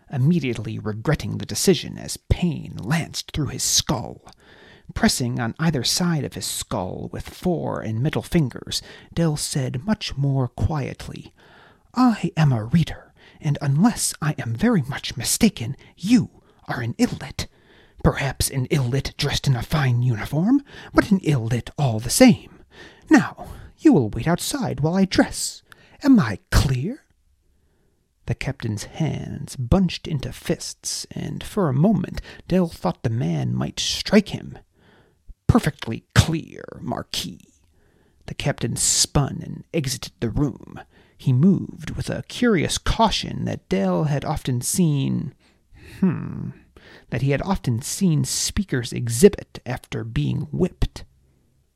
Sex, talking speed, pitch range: male, 135 wpm, 115-170 Hz